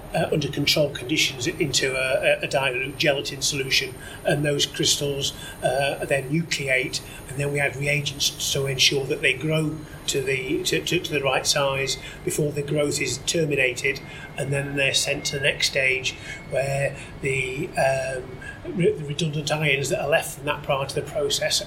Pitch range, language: 135-155 Hz, English